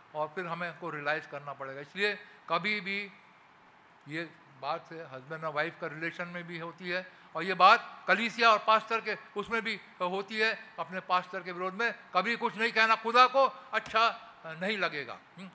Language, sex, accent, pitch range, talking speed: English, male, Indian, 165-195 Hz, 180 wpm